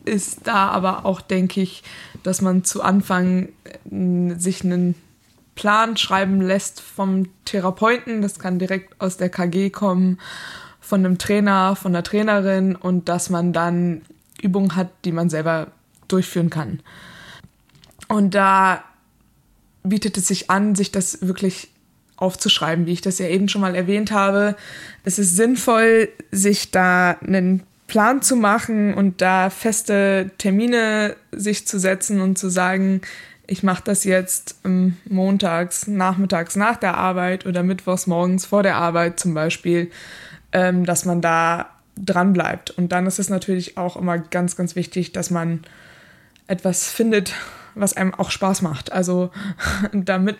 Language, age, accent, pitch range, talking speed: German, 20-39, German, 180-200 Hz, 145 wpm